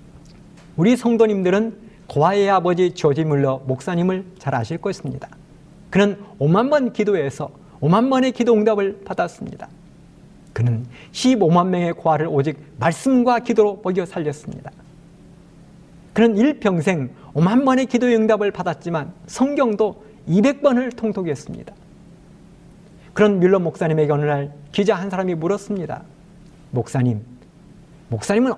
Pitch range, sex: 155-215 Hz, male